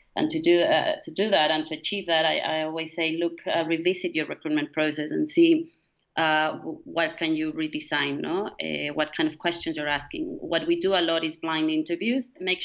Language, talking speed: English, 220 wpm